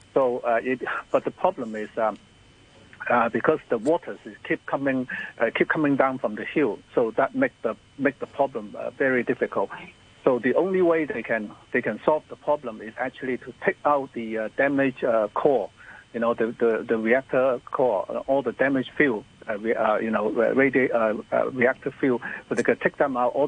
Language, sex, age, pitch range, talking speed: English, male, 60-79, 115-135 Hz, 200 wpm